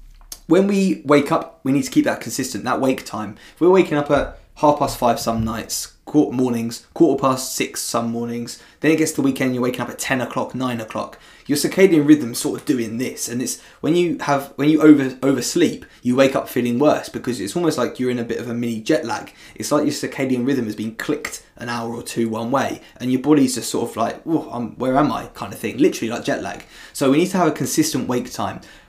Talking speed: 245 wpm